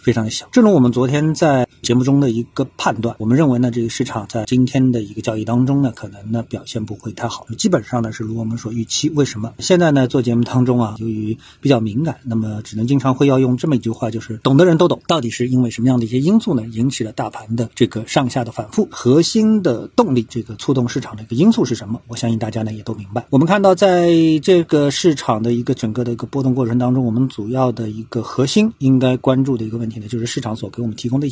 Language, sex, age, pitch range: Chinese, male, 50-69, 115-145 Hz